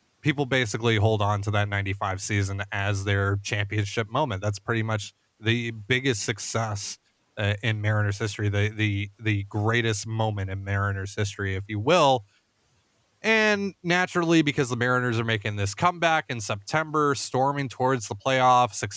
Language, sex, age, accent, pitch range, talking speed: English, male, 30-49, American, 100-125 Hz, 155 wpm